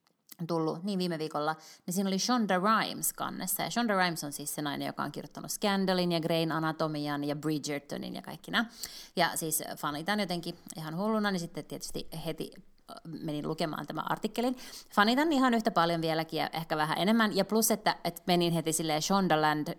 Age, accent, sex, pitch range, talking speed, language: 20-39, native, female, 155-200 Hz, 180 wpm, Finnish